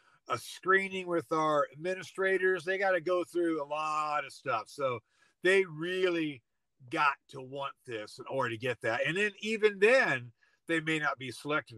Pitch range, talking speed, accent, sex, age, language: 140-175 Hz, 180 wpm, American, male, 50-69, English